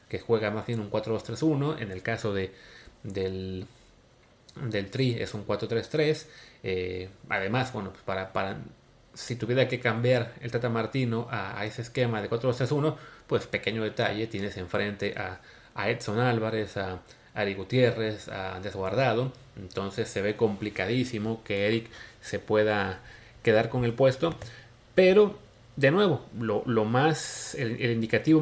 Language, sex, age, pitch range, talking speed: Spanish, male, 30-49, 105-140 Hz, 150 wpm